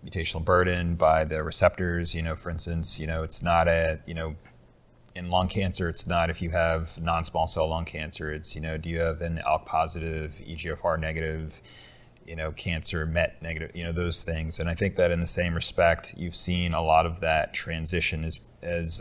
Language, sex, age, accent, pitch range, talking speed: English, male, 30-49, American, 80-85 Hz, 205 wpm